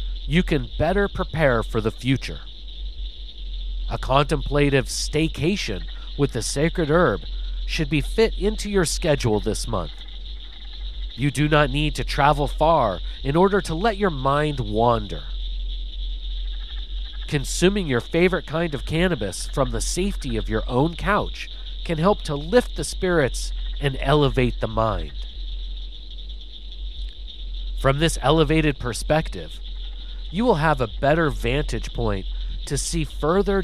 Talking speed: 130 wpm